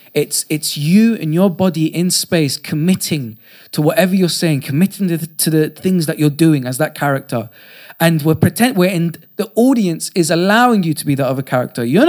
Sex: male